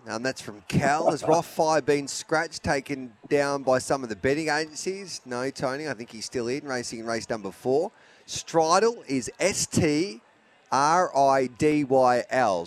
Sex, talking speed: male, 145 wpm